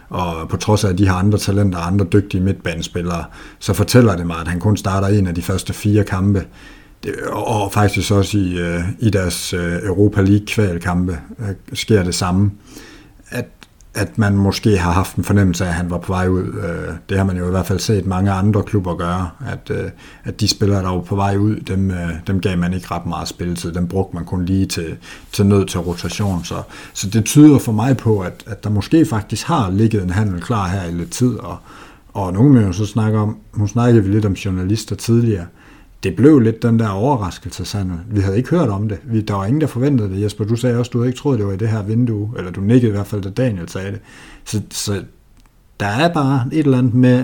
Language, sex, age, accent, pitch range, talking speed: Danish, male, 60-79, native, 95-110 Hz, 215 wpm